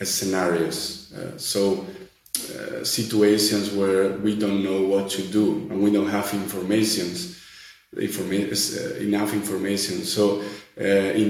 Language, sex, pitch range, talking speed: English, male, 95-105 Hz, 125 wpm